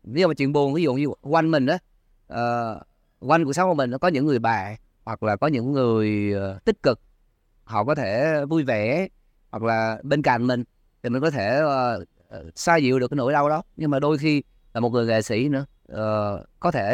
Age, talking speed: 20-39, 225 wpm